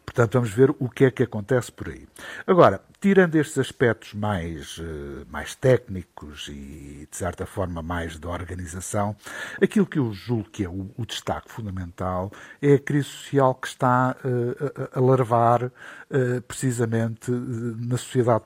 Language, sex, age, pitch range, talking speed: Portuguese, male, 60-79, 100-135 Hz, 145 wpm